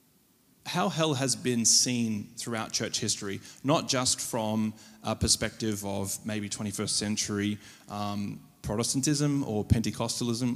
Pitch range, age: 105-120 Hz, 20-39